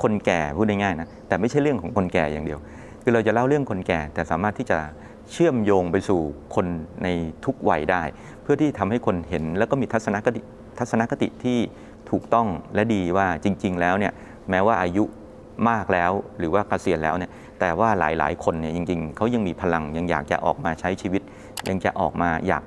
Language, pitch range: Thai, 85-110 Hz